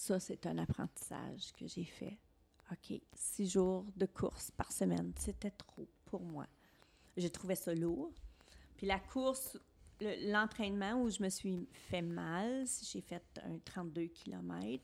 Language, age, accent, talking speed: French, 30-49, Canadian, 155 wpm